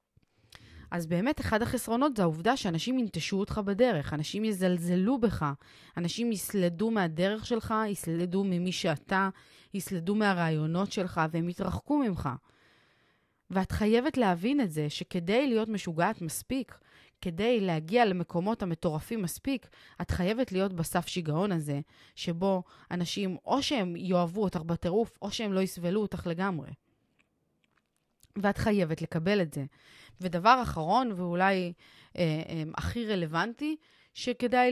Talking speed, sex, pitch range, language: 125 wpm, female, 170-220 Hz, Hebrew